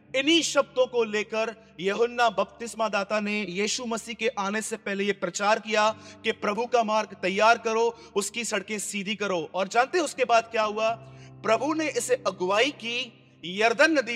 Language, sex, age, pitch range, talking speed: Hindi, male, 30-49, 195-240 Hz, 120 wpm